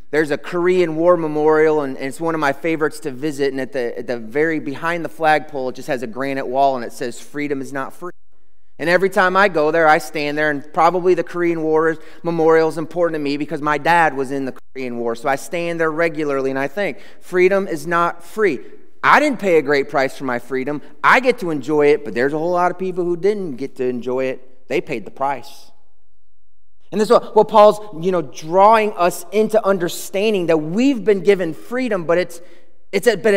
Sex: male